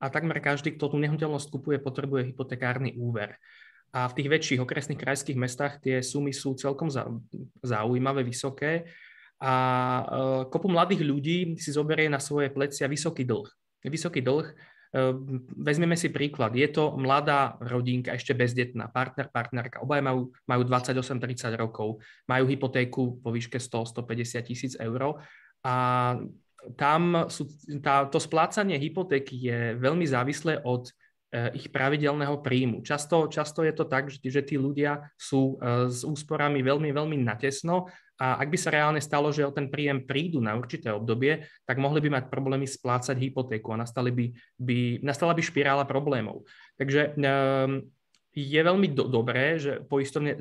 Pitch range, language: 125-145 Hz, Slovak